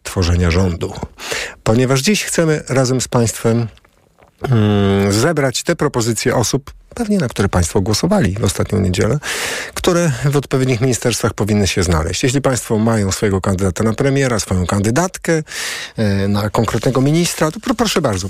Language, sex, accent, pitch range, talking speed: Polish, male, native, 105-140 Hz, 150 wpm